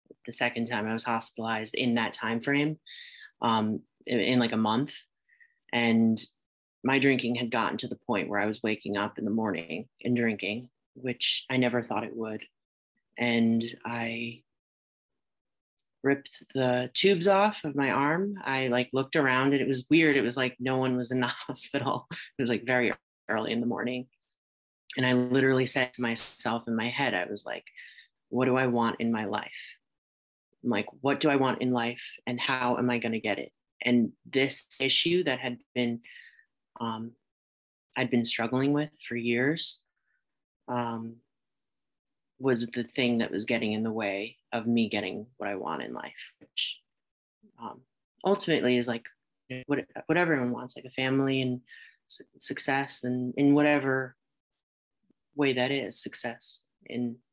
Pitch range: 115-135 Hz